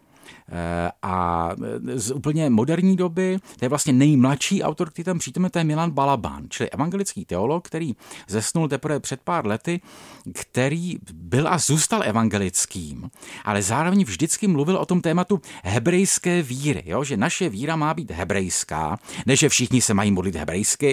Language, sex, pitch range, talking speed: Czech, male, 105-170 Hz, 155 wpm